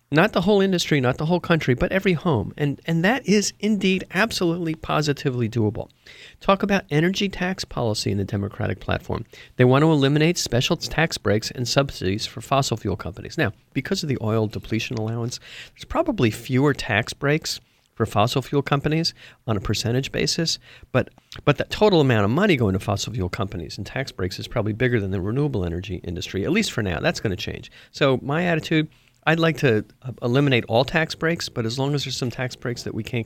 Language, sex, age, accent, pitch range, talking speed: English, male, 50-69, American, 105-150 Hz, 205 wpm